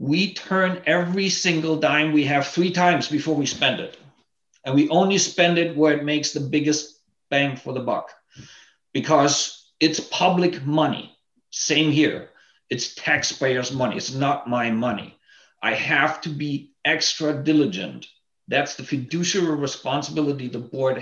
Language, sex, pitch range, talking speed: English, male, 135-165 Hz, 150 wpm